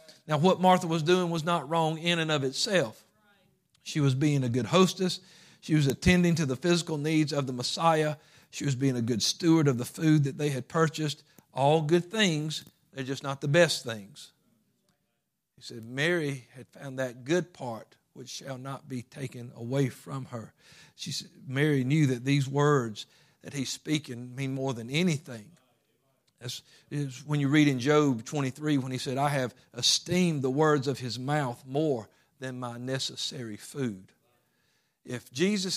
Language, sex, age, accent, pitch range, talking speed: English, male, 50-69, American, 130-165 Hz, 180 wpm